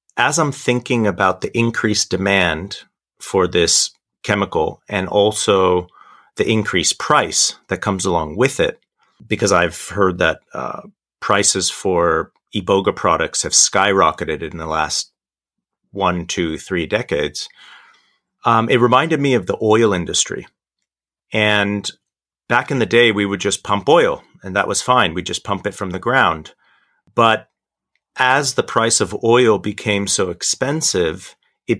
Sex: male